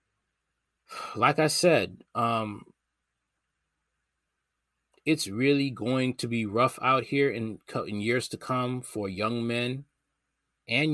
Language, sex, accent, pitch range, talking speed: English, male, American, 110-145 Hz, 115 wpm